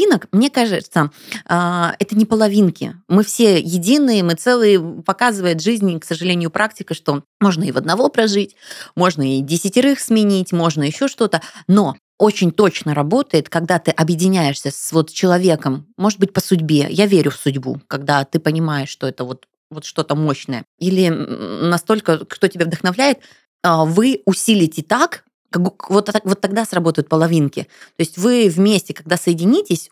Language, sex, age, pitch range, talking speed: Russian, female, 20-39, 160-210 Hz, 150 wpm